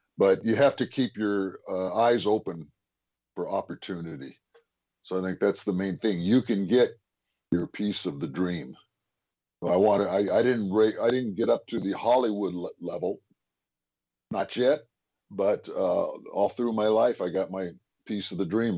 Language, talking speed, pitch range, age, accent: English, 175 wpm, 90-110 Hz, 50-69, American